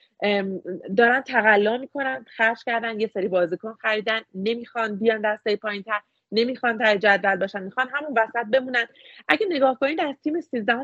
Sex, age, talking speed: female, 30-49, 150 wpm